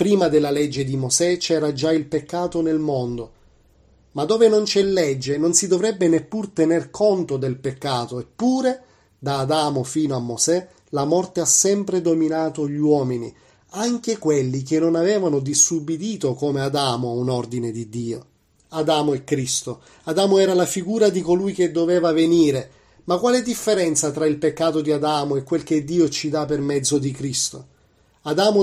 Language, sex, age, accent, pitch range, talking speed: Italian, male, 30-49, native, 135-175 Hz, 170 wpm